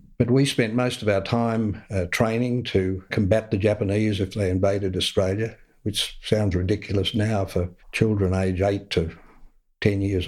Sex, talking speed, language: male, 165 wpm, English